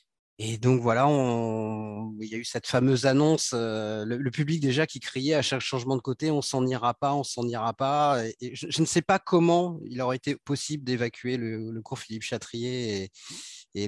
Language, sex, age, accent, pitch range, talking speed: French, male, 30-49, French, 110-135 Hz, 225 wpm